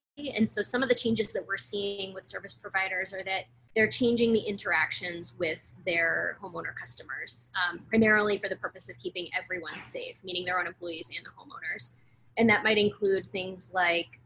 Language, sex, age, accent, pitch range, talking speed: English, female, 20-39, American, 175-205 Hz, 185 wpm